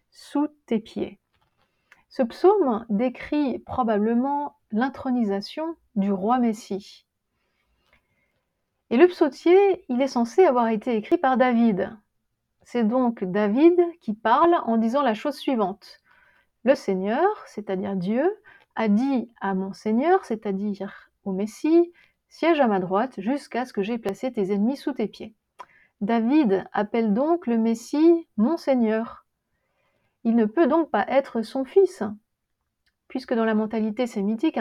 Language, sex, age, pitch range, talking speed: French, female, 30-49, 210-280 Hz, 135 wpm